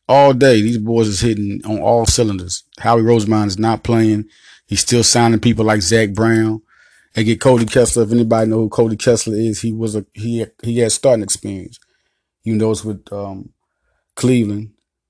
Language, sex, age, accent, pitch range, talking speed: English, male, 30-49, American, 105-115 Hz, 180 wpm